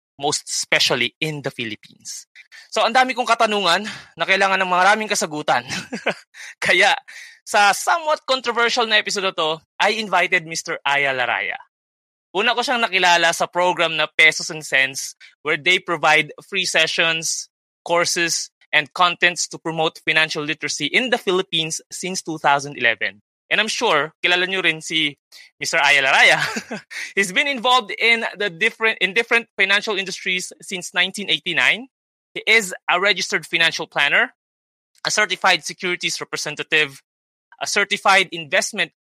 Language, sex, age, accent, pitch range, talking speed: Filipino, male, 20-39, native, 155-200 Hz, 135 wpm